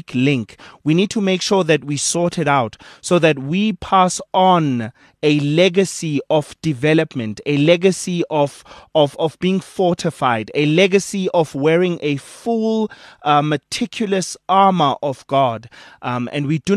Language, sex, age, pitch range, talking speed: English, male, 30-49, 140-180 Hz, 150 wpm